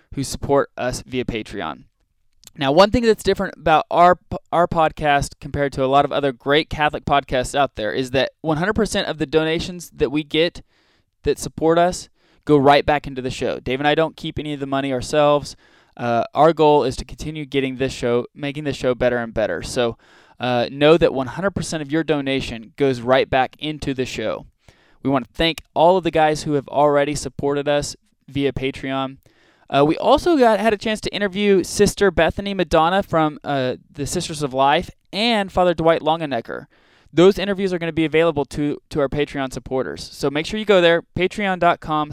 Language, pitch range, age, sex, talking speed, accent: English, 130-165 Hz, 20-39, male, 195 wpm, American